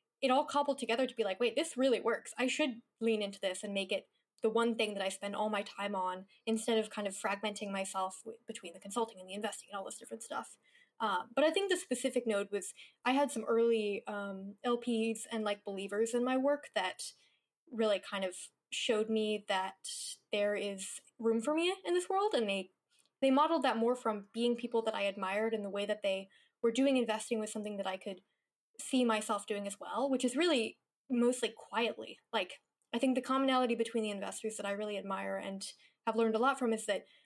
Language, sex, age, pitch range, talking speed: English, female, 10-29, 205-250 Hz, 220 wpm